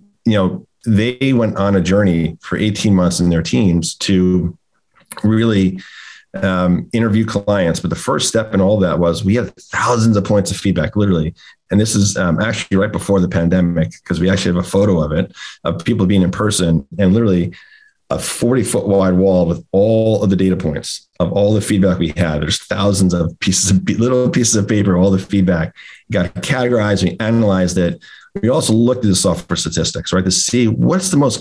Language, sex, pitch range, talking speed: English, male, 90-105 Hz, 200 wpm